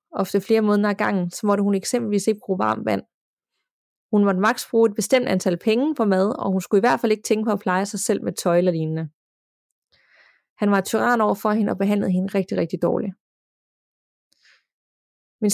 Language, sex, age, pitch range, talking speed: Danish, female, 20-39, 190-225 Hz, 205 wpm